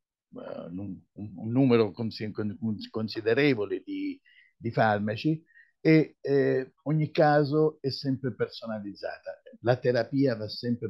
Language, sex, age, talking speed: Italian, male, 50-69, 95 wpm